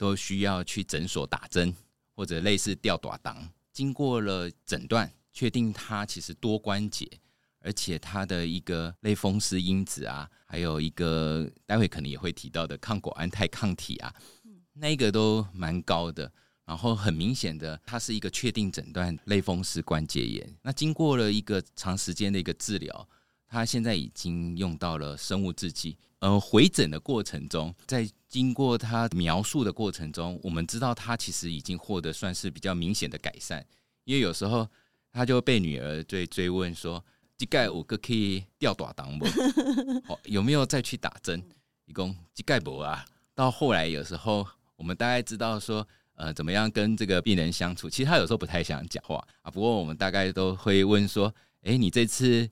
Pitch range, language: 85-115 Hz, Chinese